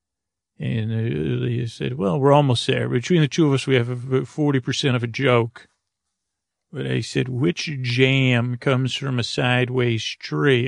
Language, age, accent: English, 40-59, American